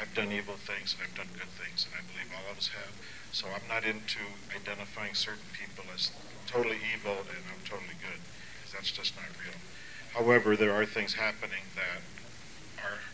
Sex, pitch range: male, 105-125 Hz